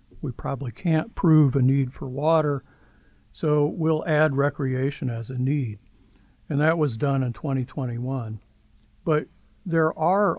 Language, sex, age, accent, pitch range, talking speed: English, male, 60-79, American, 125-155 Hz, 140 wpm